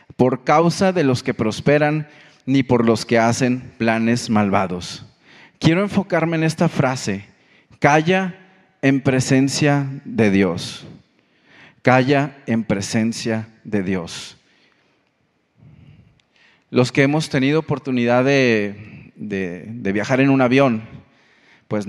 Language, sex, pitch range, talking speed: Spanish, male, 115-160 Hz, 110 wpm